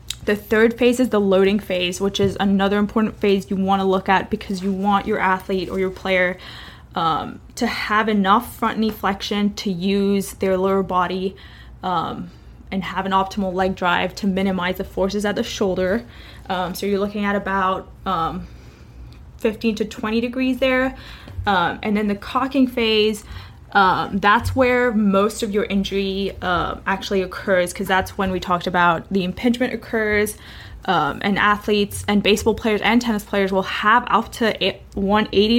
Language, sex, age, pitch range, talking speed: English, female, 20-39, 190-215 Hz, 170 wpm